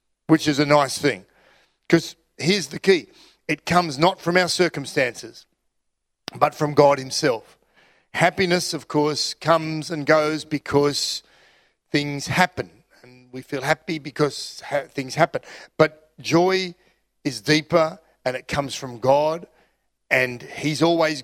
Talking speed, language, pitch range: 135 wpm, English, 140-170 Hz